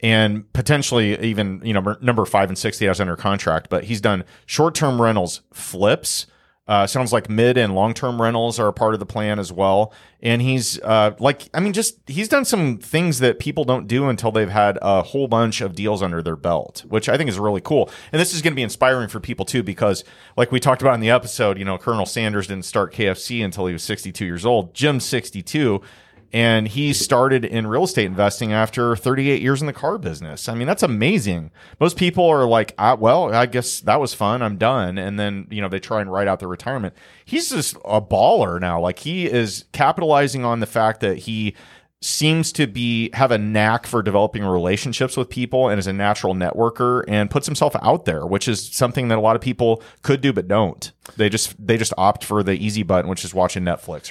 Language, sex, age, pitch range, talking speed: English, male, 40-59, 100-130 Hz, 220 wpm